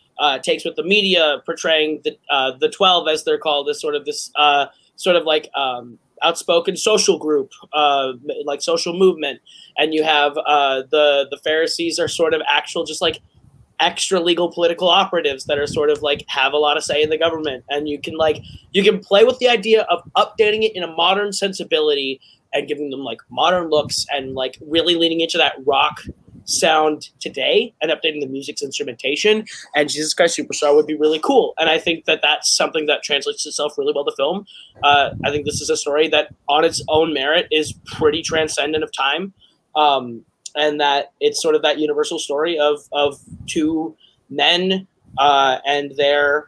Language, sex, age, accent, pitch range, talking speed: English, male, 20-39, American, 145-180 Hz, 195 wpm